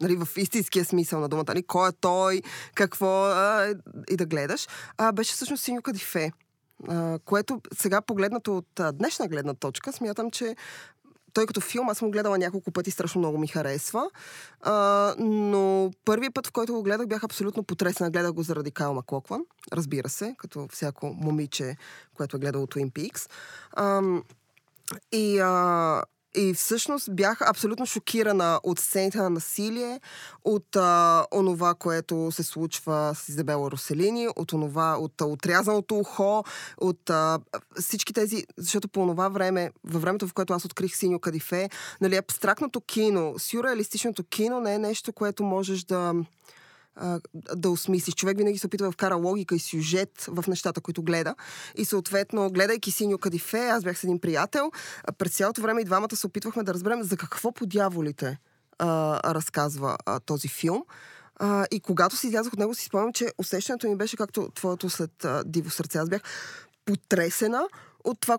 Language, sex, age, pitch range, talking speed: Bulgarian, female, 20-39, 170-210 Hz, 165 wpm